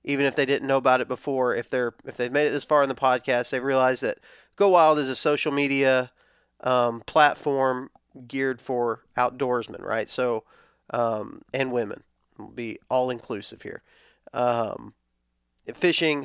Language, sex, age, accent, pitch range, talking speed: English, male, 30-49, American, 120-145 Hz, 165 wpm